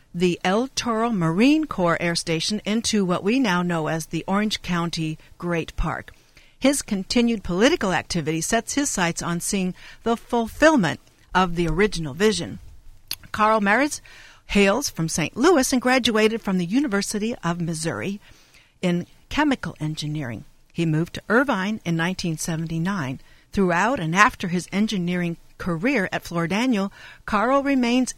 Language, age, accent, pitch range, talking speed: English, 60-79, American, 170-230 Hz, 140 wpm